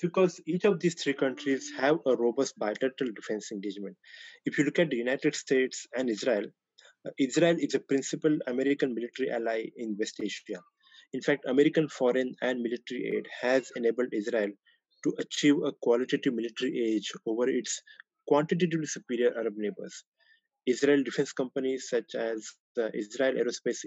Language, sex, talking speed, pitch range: English, male, 155 wpm, 120-170 Hz